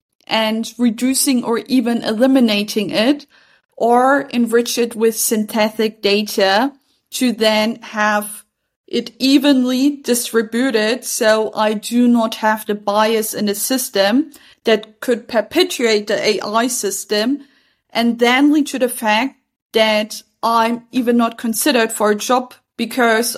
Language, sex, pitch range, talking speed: English, female, 220-260 Hz, 125 wpm